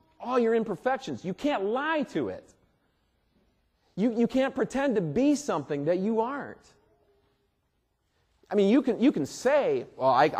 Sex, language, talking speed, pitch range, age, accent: male, English, 150 wpm, 145-230 Hz, 40-59, American